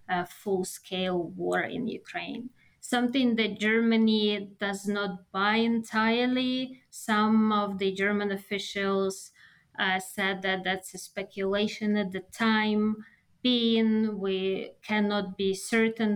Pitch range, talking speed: 195-225 Hz, 115 wpm